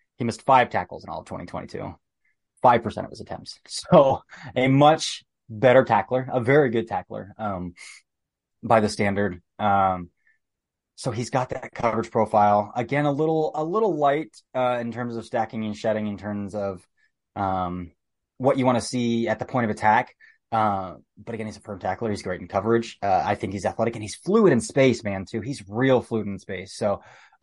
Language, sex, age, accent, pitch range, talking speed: English, male, 20-39, American, 105-125 Hz, 195 wpm